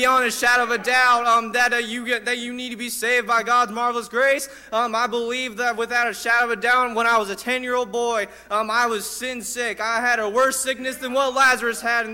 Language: English